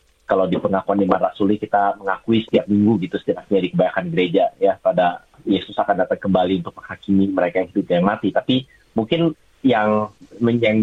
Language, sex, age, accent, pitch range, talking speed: Indonesian, male, 30-49, native, 100-120 Hz, 170 wpm